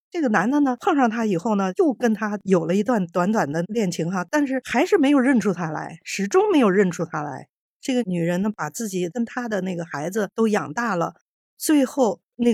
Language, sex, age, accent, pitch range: Chinese, female, 50-69, native, 180-260 Hz